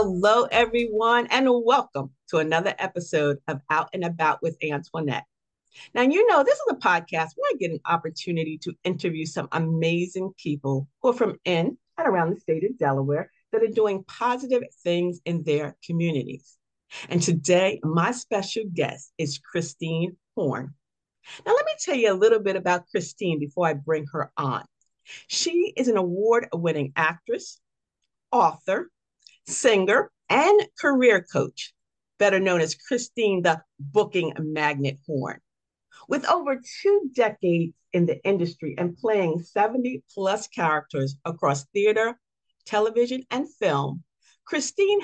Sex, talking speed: female, 145 wpm